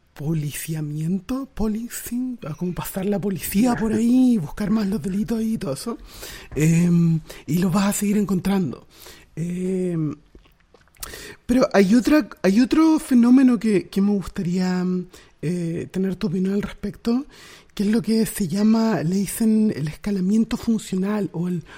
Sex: male